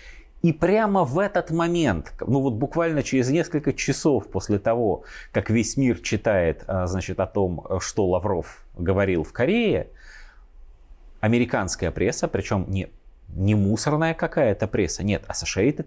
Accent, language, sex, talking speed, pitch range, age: native, Russian, male, 130 wpm, 95-130 Hz, 30-49